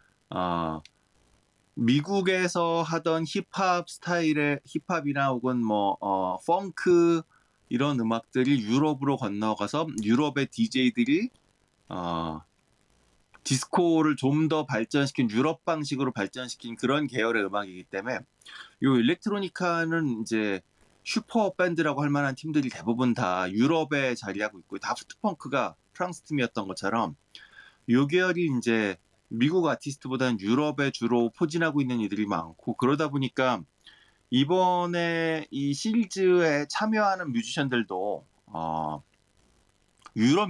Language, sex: Korean, male